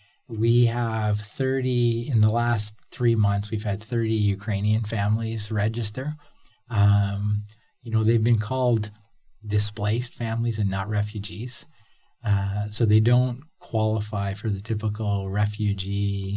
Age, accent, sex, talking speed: 40-59, American, male, 125 wpm